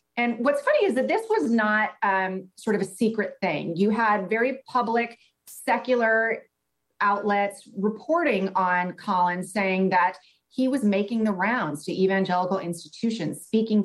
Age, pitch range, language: 30-49, 170-215 Hz, English